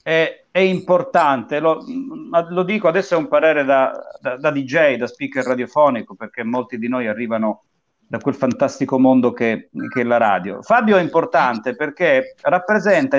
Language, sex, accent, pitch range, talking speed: Italian, male, native, 140-220 Hz, 165 wpm